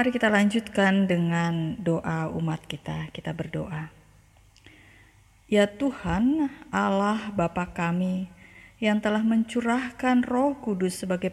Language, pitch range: Indonesian, 165-205 Hz